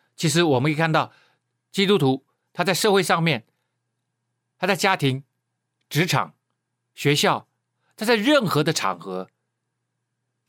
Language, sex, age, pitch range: Chinese, male, 50-69, 125-175 Hz